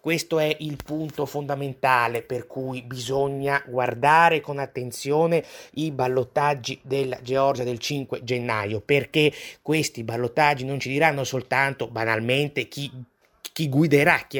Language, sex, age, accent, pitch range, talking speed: Italian, male, 30-49, native, 110-145 Hz, 125 wpm